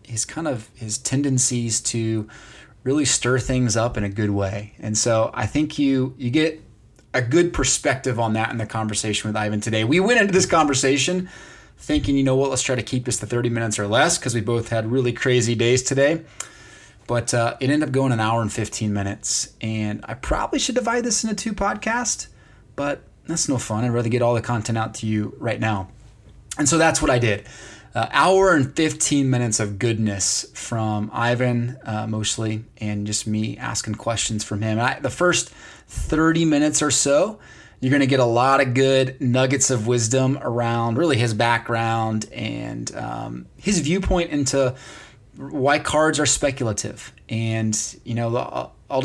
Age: 20-39